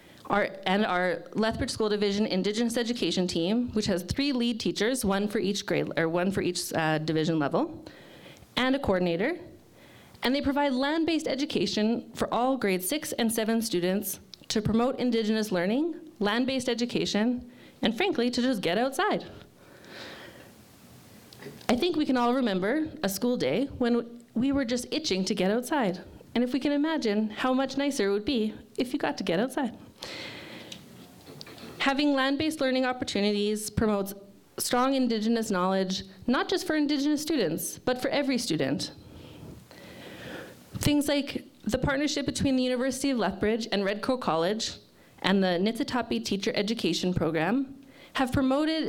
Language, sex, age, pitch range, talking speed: English, female, 30-49, 200-265 Hz, 150 wpm